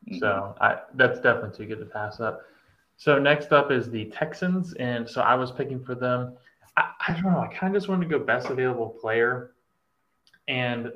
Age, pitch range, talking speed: 20-39, 105-125 Hz, 205 wpm